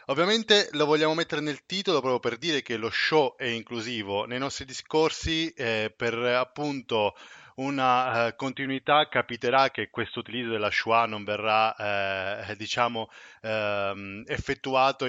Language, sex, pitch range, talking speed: Italian, male, 115-150 Hz, 135 wpm